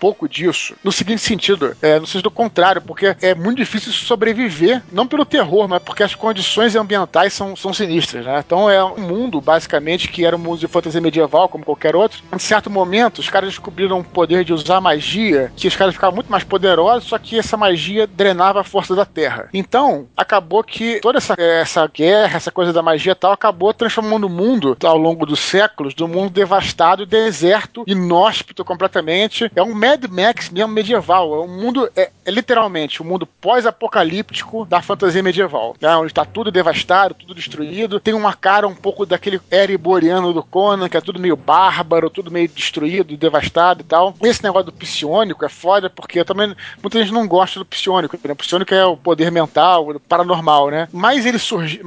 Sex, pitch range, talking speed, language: male, 170-215 Hz, 195 wpm, English